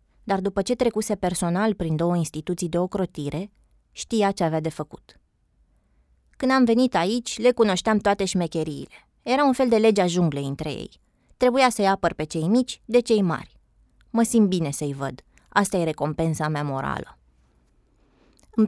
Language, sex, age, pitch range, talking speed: Romanian, female, 20-39, 160-215 Hz, 165 wpm